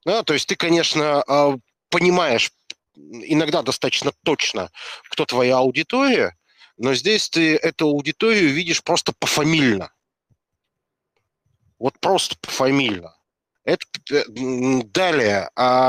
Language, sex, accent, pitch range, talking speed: Russian, male, native, 125-160 Hz, 100 wpm